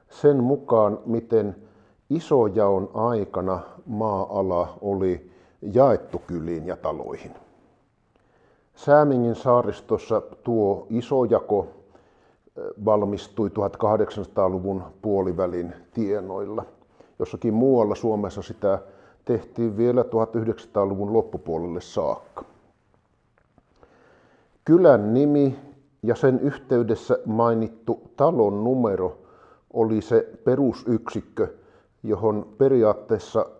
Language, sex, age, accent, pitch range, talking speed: Finnish, male, 50-69, native, 100-125 Hz, 75 wpm